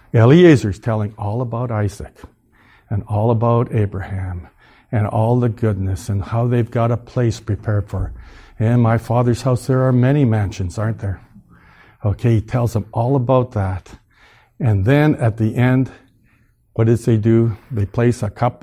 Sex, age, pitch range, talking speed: male, 60-79, 100-120 Hz, 165 wpm